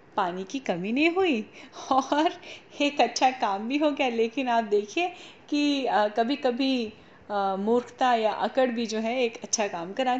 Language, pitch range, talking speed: Hindi, 215-275 Hz, 165 wpm